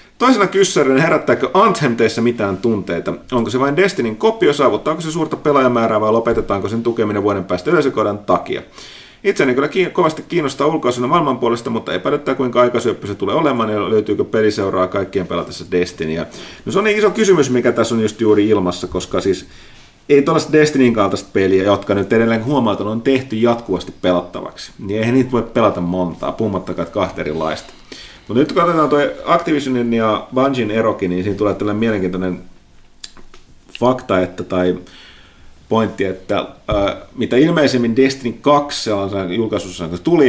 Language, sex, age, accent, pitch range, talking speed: Finnish, male, 30-49, native, 95-130 Hz, 155 wpm